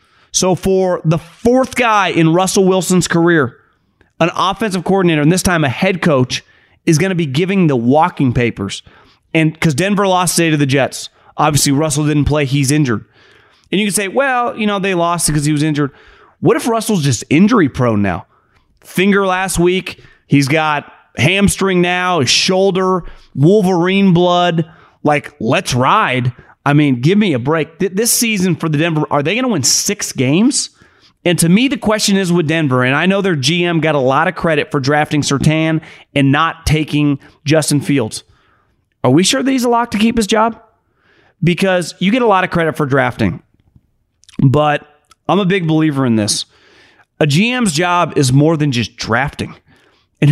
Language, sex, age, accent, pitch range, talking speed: English, male, 30-49, American, 140-190 Hz, 185 wpm